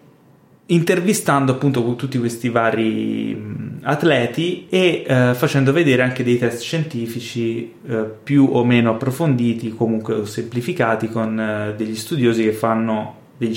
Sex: male